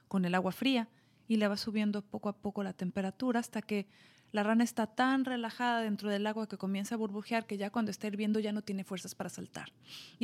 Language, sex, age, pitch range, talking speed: Spanish, female, 30-49, 185-230 Hz, 230 wpm